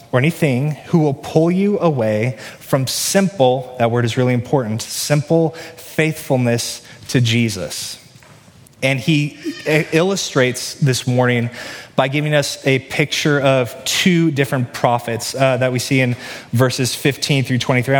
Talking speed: 135 wpm